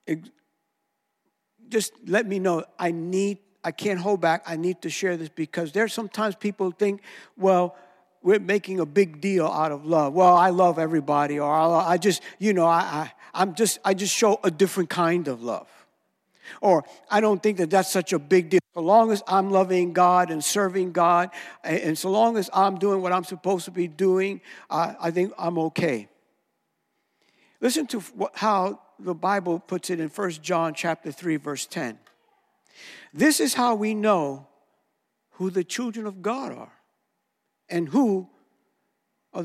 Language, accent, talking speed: English, American, 175 wpm